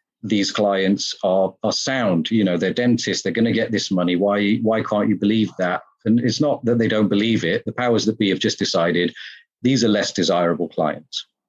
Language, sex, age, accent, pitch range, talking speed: English, male, 40-59, British, 95-120 Hz, 215 wpm